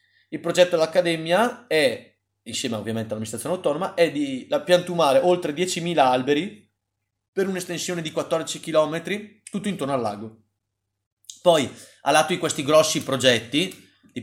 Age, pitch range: 30-49, 115-155 Hz